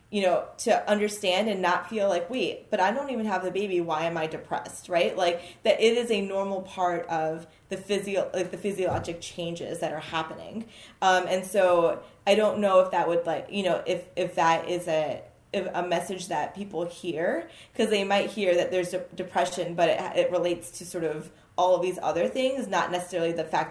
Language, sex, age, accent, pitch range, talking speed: English, female, 20-39, American, 170-200 Hz, 215 wpm